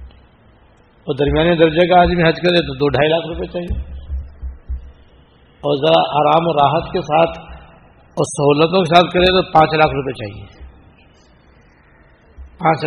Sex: male